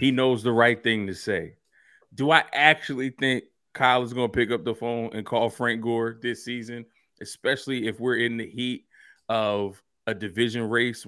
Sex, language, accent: male, English, American